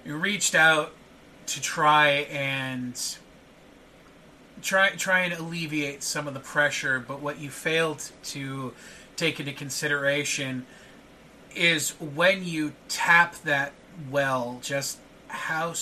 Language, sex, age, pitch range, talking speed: English, male, 30-49, 130-155 Hz, 115 wpm